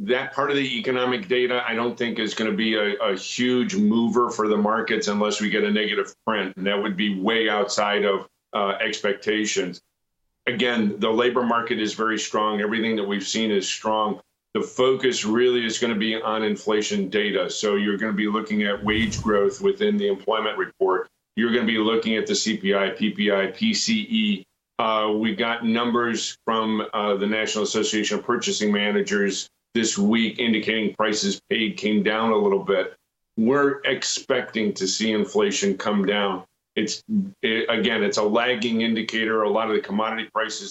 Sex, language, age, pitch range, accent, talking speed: male, English, 50-69, 105-120 Hz, American, 175 wpm